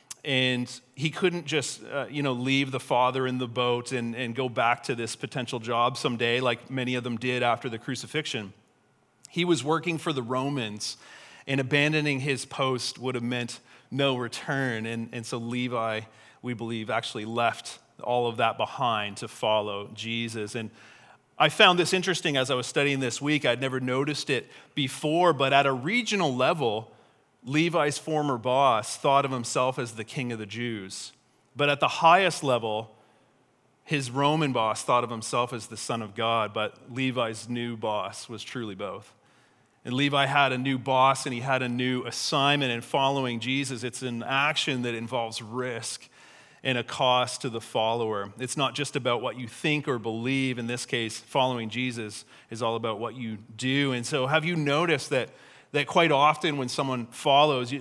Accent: American